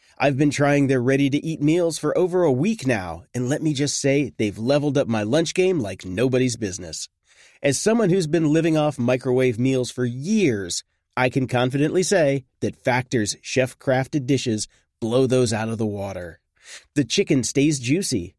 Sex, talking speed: male, 175 wpm